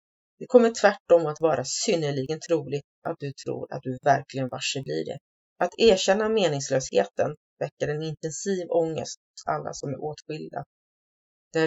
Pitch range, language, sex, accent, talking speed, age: 140-170 Hz, Swedish, female, native, 150 wpm, 30-49